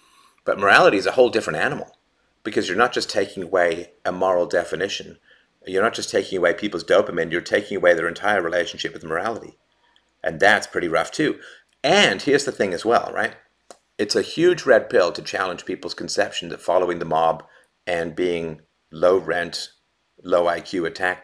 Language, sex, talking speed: English, male, 180 wpm